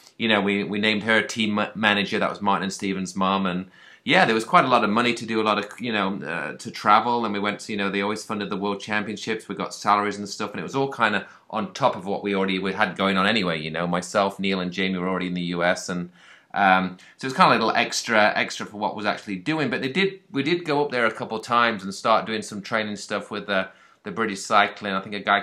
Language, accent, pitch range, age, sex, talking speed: English, British, 90-105 Hz, 30-49, male, 285 wpm